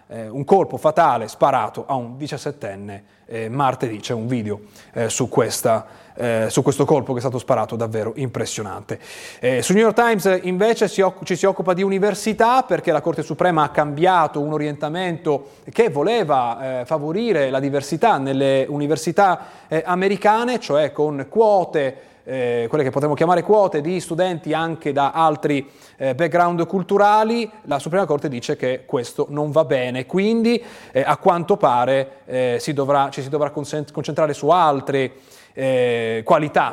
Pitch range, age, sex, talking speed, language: 130-180 Hz, 30-49, male, 150 wpm, Italian